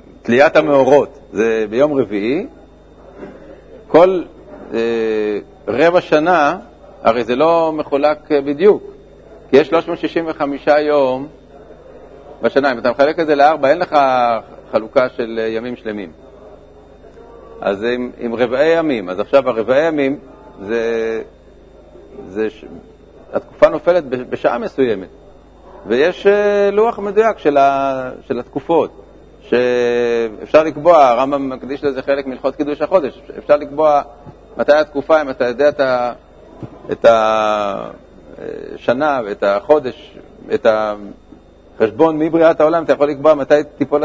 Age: 50-69